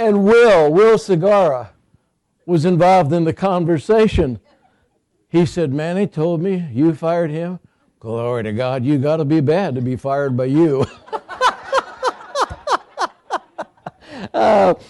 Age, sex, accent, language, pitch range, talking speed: 60-79, male, American, English, 150-205 Hz, 125 wpm